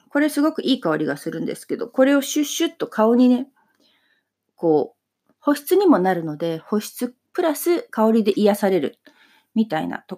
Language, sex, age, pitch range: Japanese, female, 40-59, 180-280 Hz